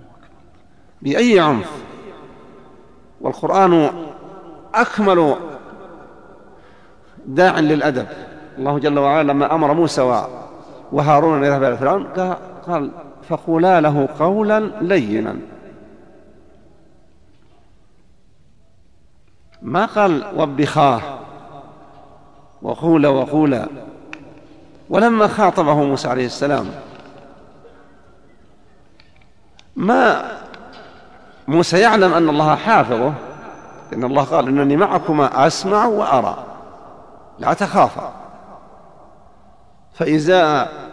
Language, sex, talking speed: Arabic, male, 70 wpm